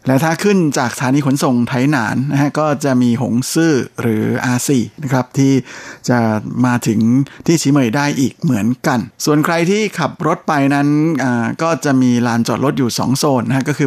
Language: Thai